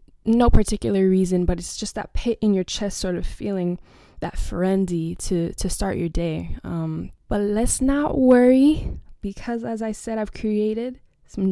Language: English